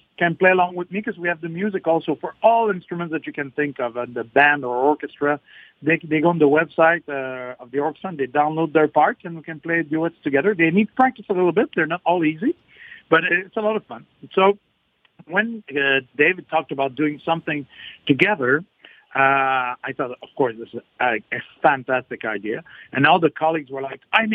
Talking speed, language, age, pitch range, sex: 210 wpm, English, 50-69, 140-180 Hz, male